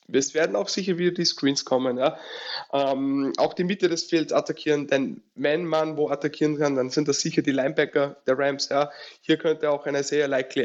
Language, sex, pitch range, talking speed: German, male, 130-160 Hz, 195 wpm